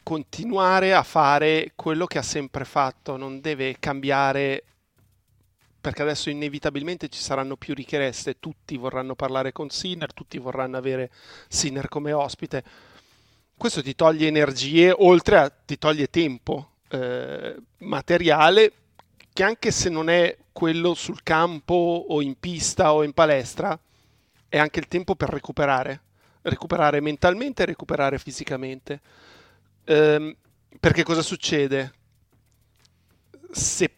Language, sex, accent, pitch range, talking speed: Italian, male, native, 135-170 Hz, 120 wpm